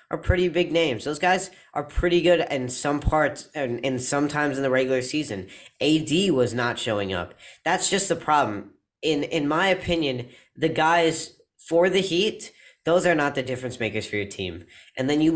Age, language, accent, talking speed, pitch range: 10-29, English, American, 190 wpm, 115-155 Hz